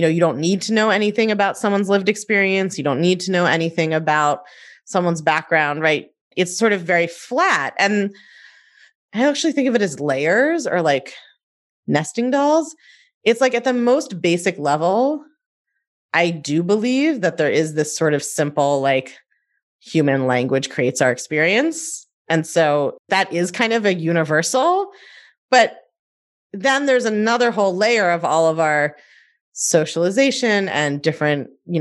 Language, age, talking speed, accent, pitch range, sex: English, 30-49, 160 wpm, American, 155-225 Hz, female